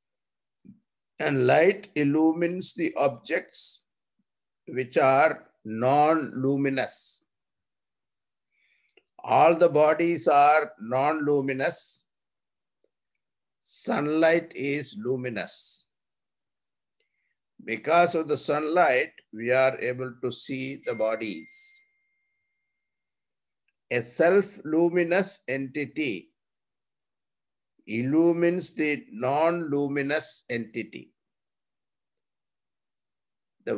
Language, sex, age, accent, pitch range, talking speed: English, male, 60-79, Indian, 130-170 Hz, 60 wpm